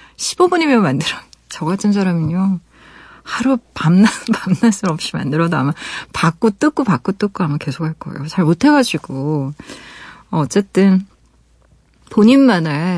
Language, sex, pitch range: Korean, female, 165-225 Hz